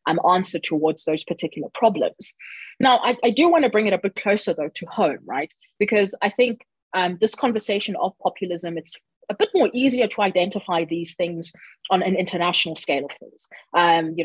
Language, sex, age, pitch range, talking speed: English, female, 20-39, 170-230 Hz, 190 wpm